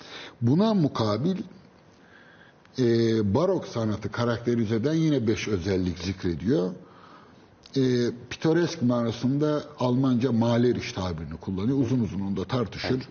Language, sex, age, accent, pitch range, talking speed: Turkish, male, 60-79, native, 105-135 Hz, 105 wpm